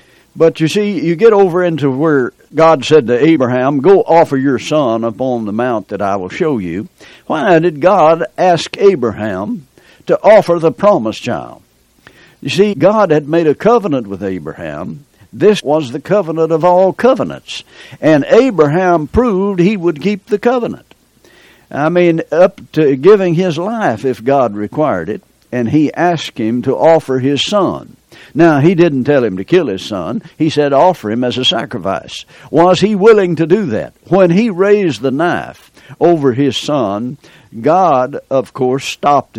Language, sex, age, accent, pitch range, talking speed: English, male, 60-79, American, 130-180 Hz, 170 wpm